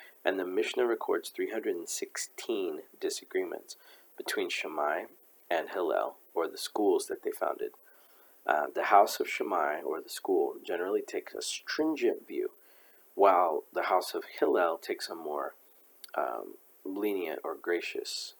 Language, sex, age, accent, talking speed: English, male, 40-59, American, 135 wpm